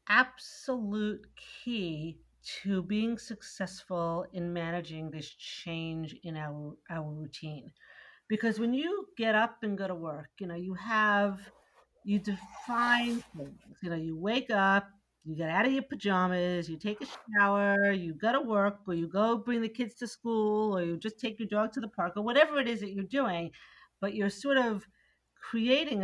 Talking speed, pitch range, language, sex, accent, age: 175 wpm, 175-230 Hz, English, female, American, 50-69